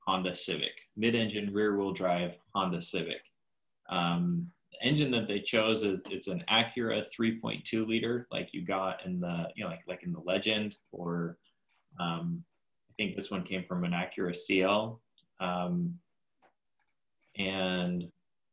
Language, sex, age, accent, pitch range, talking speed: English, male, 20-39, American, 90-105 Hz, 145 wpm